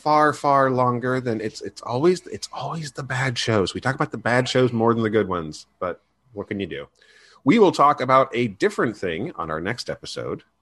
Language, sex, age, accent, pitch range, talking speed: English, male, 40-59, American, 100-130 Hz, 220 wpm